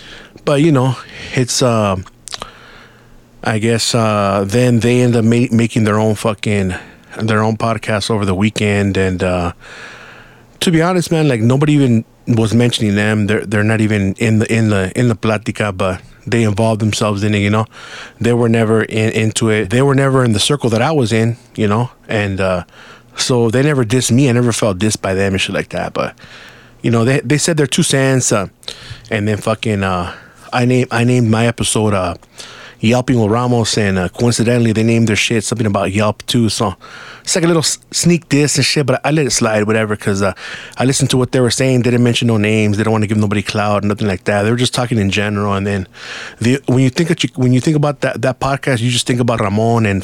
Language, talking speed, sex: English, 230 wpm, male